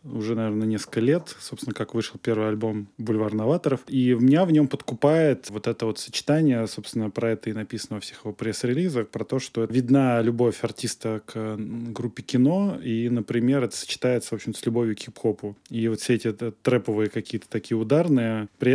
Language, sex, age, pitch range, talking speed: Russian, male, 20-39, 115-135 Hz, 180 wpm